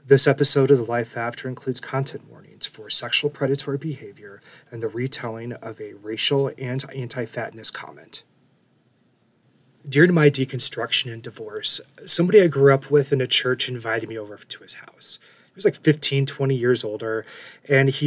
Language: English